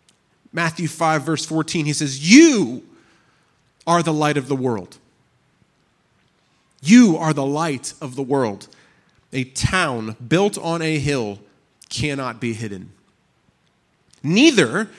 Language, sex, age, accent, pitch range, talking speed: English, male, 30-49, American, 115-155 Hz, 120 wpm